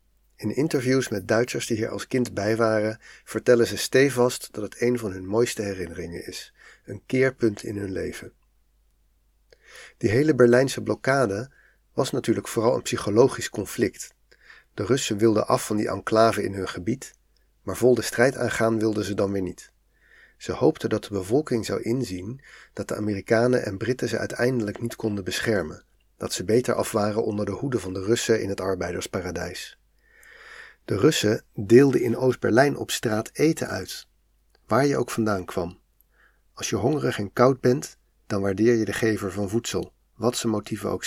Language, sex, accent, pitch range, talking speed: Dutch, male, Dutch, 100-120 Hz, 170 wpm